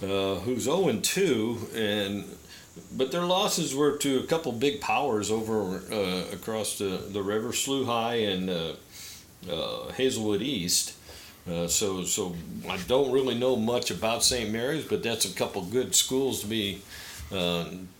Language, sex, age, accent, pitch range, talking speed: English, male, 50-69, American, 90-115 Hz, 155 wpm